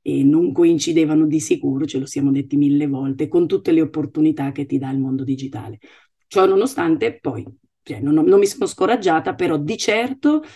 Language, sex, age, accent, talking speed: Italian, female, 40-59, native, 190 wpm